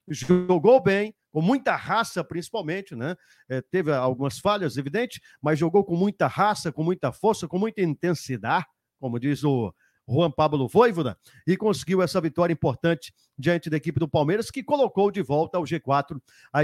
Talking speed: 165 wpm